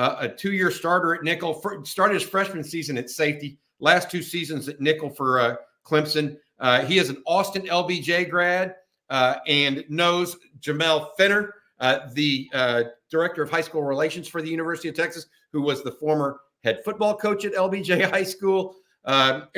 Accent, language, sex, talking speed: American, English, male, 175 wpm